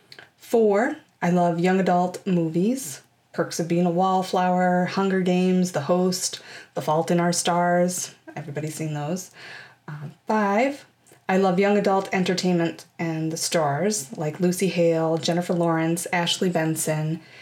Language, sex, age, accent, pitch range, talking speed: English, female, 20-39, American, 170-200 Hz, 140 wpm